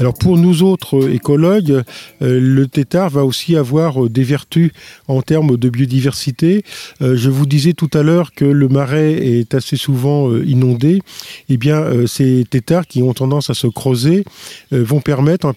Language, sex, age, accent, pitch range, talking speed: French, male, 50-69, French, 125-155 Hz, 160 wpm